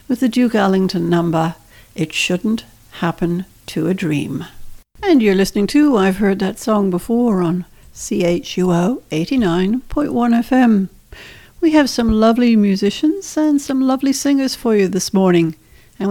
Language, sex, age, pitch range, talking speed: English, female, 60-79, 170-235 Hz, 140 wpm